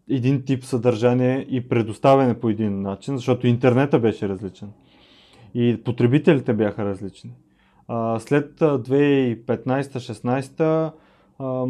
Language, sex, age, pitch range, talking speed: Bulgarian, male, 30-49, 115-135 Hz, 90 wpm